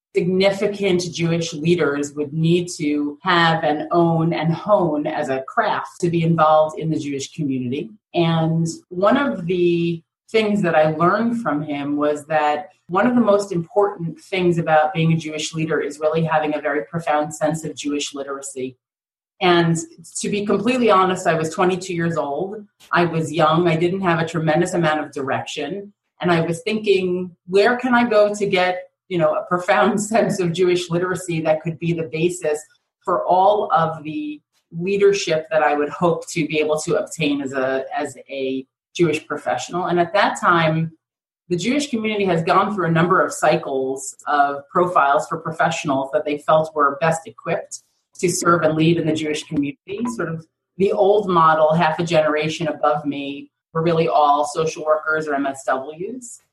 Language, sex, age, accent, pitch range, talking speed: English, female, 30-49, American, 150-180 Hz, 175 wpm